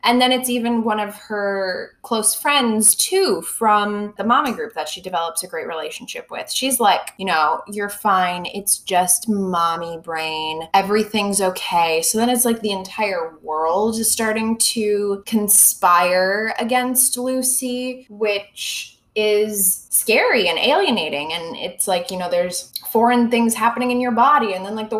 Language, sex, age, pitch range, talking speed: English, female, 20-39, 190-240 Hz, 160 wpm